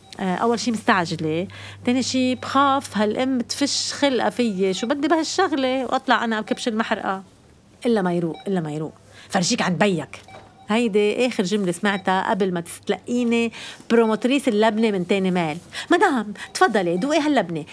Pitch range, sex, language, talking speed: 190-260 Hz, female, Arabic, 145 wpm